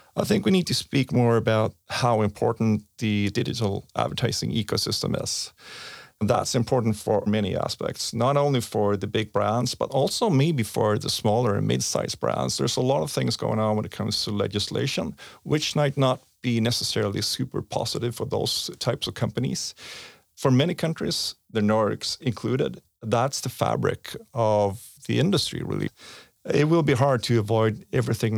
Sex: male